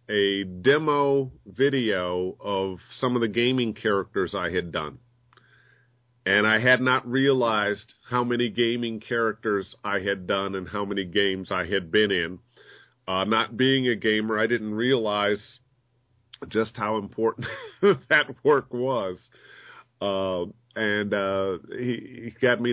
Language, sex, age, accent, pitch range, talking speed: English, male, 40-59, American, 100-120 Hz, 140 wpm